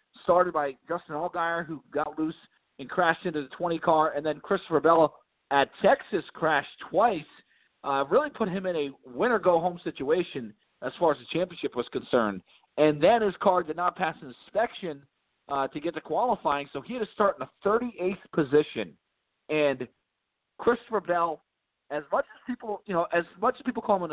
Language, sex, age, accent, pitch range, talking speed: English, male, 40-59, American, 140-180 Hz, 190 wpm